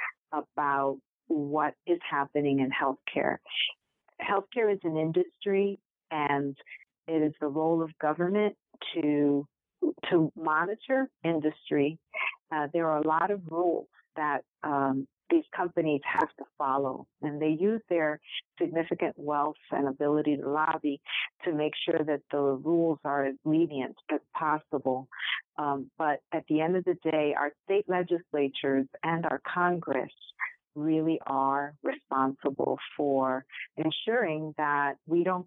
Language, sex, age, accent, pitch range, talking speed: English, female, 50-69, American, 140-165 Hz, 130 wpm